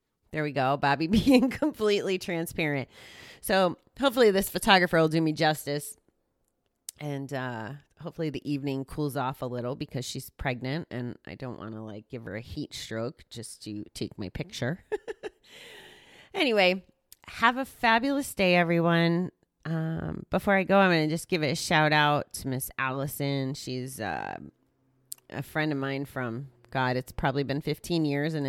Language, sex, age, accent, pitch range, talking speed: English, female, 30-49, American, 130-165 Hz, 160 wpm